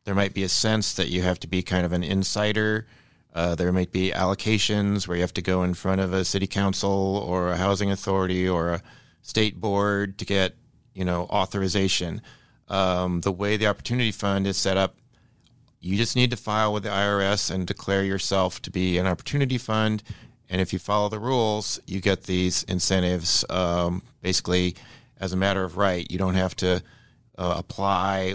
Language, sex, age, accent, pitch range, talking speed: English, male, 30-49, American, 90-110 Hz, 195 wpm